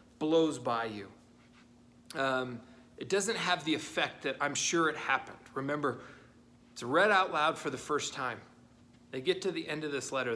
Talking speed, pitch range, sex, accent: 180 wpm, 145-215 Hz, male, American